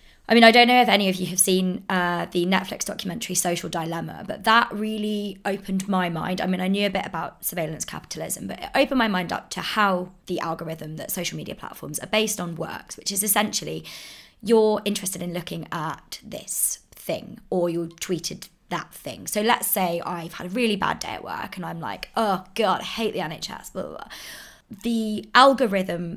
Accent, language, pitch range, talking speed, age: British, English, 175-215 Hz, 205 wpm, 20-39